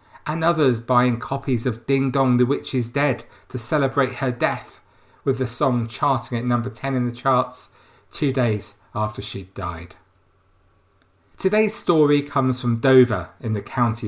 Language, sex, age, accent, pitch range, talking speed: English, male, 40-59, British, 100-135 Hz, 160 wpm